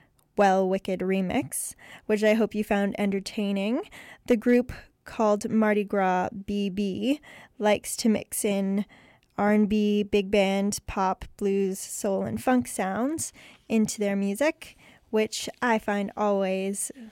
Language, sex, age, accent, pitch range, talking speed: English, female, 10-29, American, 195-225 Hz, 125 wpm